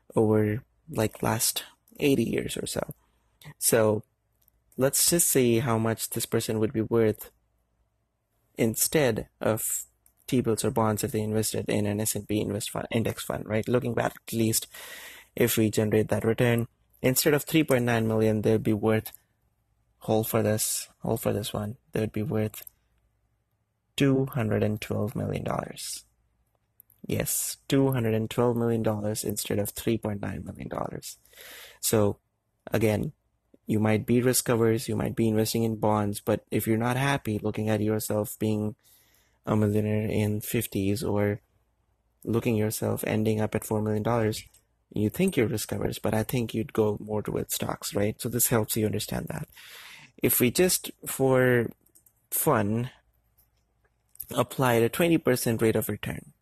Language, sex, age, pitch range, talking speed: English, male, 20-39, 105-115 Hz, 155 wpm